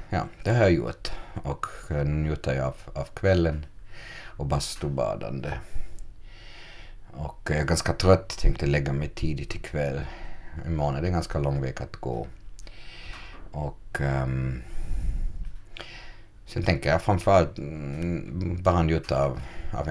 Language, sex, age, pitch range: Swedish, male, 50-69, 70-100 Hz